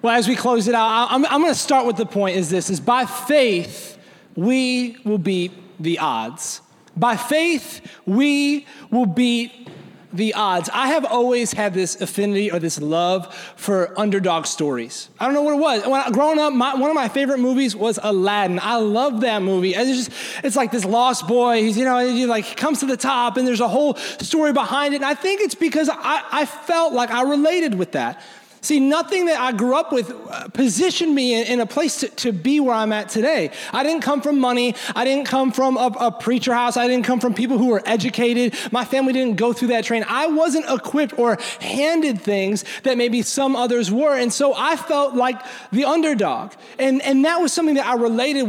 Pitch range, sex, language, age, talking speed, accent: 225-280 Hz, male, English, 30-49, 220 wpm, American